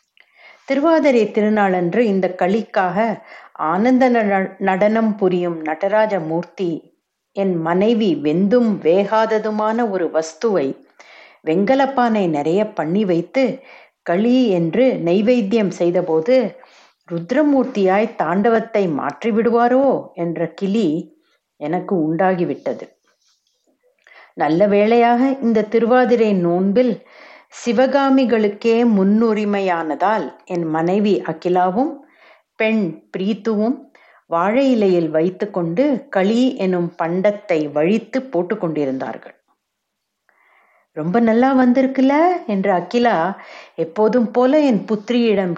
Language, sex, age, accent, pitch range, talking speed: Tamil, female, 60-79, native, 180-245 Hz, 80 wpm